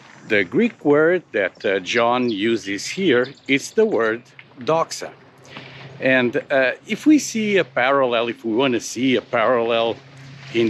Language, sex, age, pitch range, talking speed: English, male, 50-69, 120-145 Hz, 150 wpm